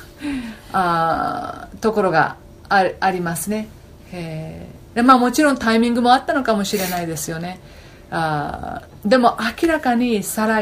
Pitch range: 165-225 Hz